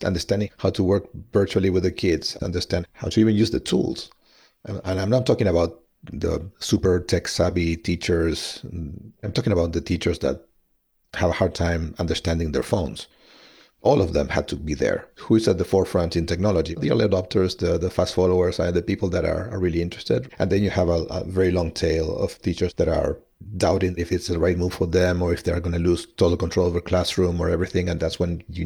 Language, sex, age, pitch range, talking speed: English, male, 40-59, 85-95 Hz, 220 wpm